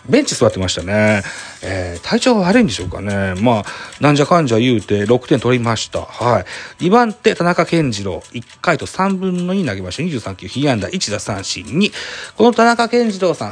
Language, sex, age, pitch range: Japanese, male, 40-59, 105-170 Hz